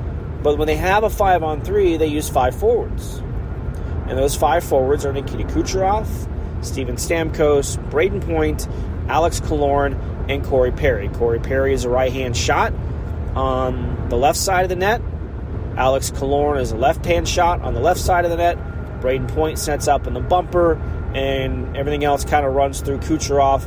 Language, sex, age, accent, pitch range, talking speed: English, male, 30-49, American, 95-150 Hz, 170 wpm